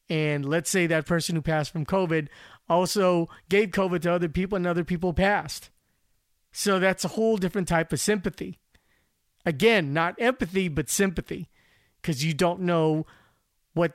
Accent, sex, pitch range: American, male, 160-200 Hz